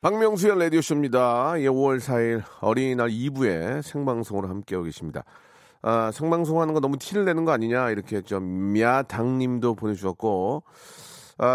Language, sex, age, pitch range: Korean, male, 40-59, 100-150 Hz